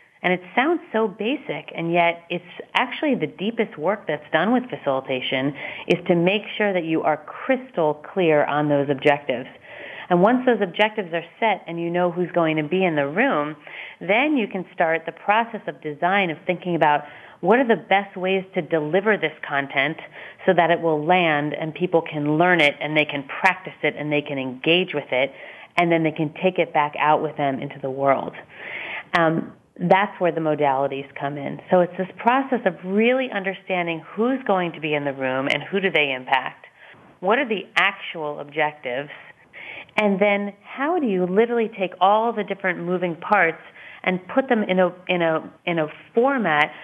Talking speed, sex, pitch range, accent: 195 wpm, female, 155-195 Hz, American